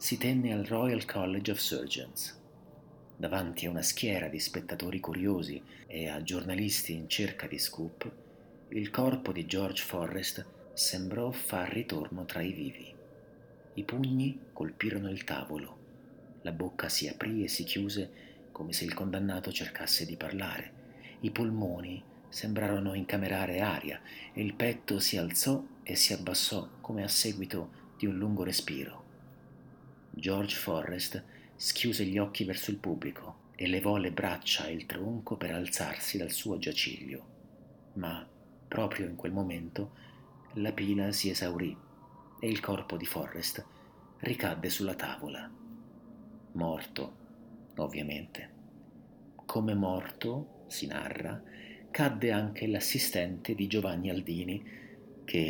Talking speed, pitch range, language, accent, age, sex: 130 wpm, 90-105 Hz, Italian, native, 50-69, male